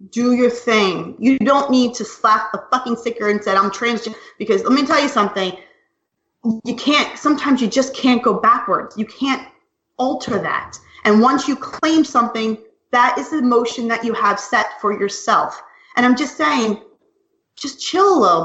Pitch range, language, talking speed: 220-335 Hz, English, 180 wpm